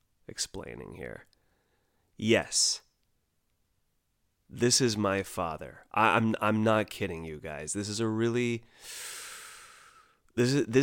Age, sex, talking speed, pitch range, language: 30-49, male, 100 wpm, 90-115 Hz, English